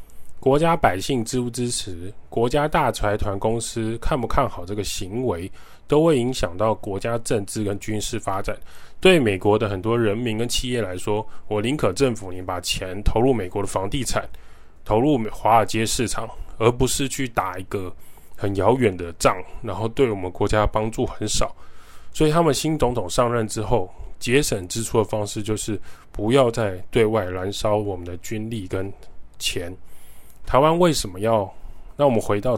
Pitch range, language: 95-120 Hz, Chinese